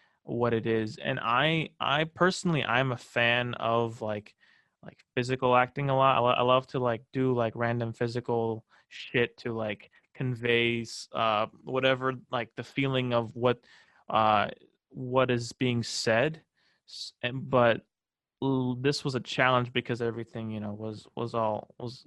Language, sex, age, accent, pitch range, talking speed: English, male, 20-39, American, 115-130 Hz, 150 wpm